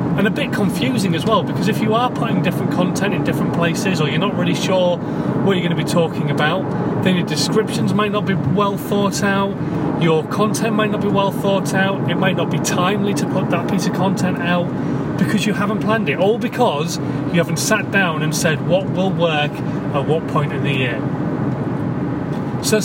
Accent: British